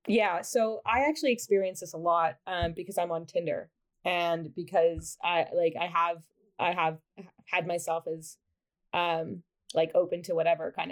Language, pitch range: English, 170-250 Hz